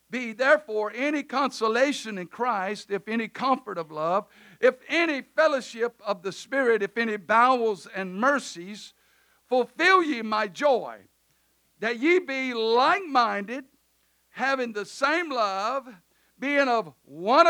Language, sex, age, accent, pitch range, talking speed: English, male, 60-79, American, 195-265 Hz, 125 wpm